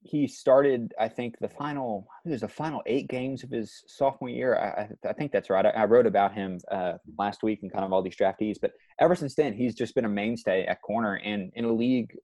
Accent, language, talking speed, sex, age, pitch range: American, English, 230 wpm, male, 20-39, 95-115 Hz